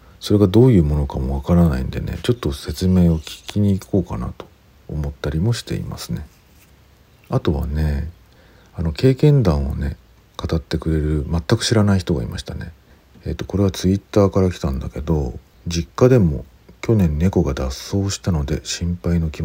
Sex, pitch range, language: male, 75-100 Hz, Japanese